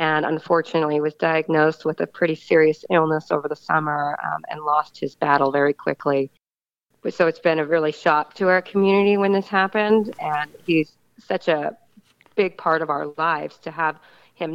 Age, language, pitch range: 40-59, English, 150-175 Hz